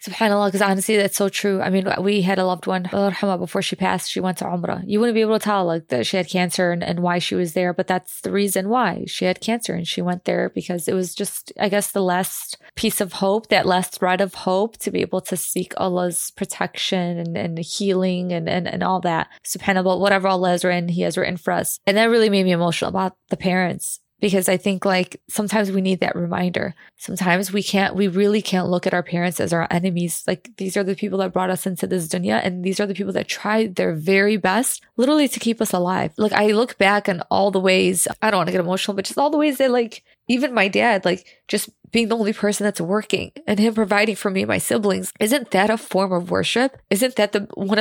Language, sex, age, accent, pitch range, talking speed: English, female, 20-39, American, 185-205 Hz, 250 wpm